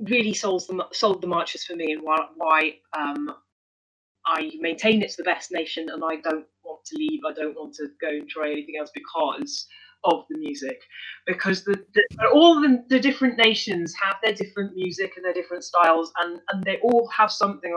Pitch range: 160-225 Hz